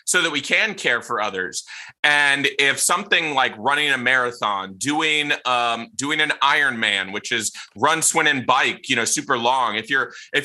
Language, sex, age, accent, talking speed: English, male, 20-39, American, 185 wpm